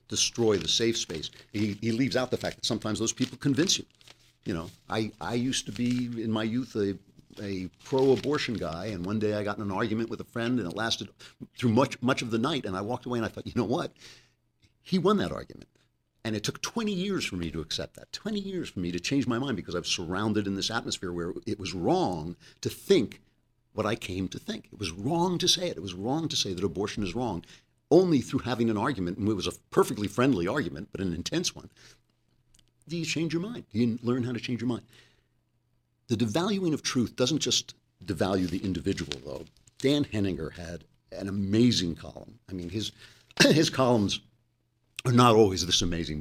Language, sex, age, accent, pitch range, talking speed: English, male, 60-79, American, 95-125 Hz, 220 wpm